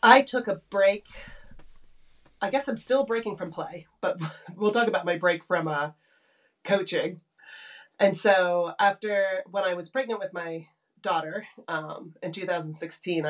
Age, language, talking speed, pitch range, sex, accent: 30-49, English, 150 wpm, 160-195 Hz, female, American